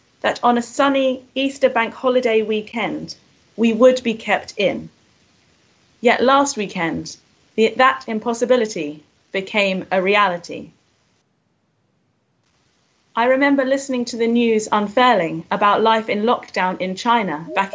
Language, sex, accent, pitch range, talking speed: English, female, British, 195-240 Hz, 120 wpm